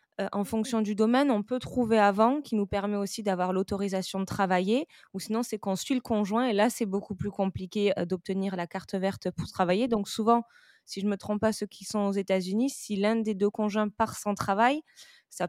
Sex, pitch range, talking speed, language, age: female, 200-235 Hz, 235 wpm, French, 20-39